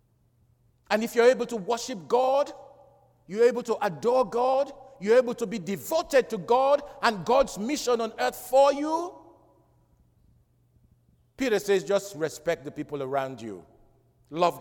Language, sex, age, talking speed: English, male, 50-69, 145 wpm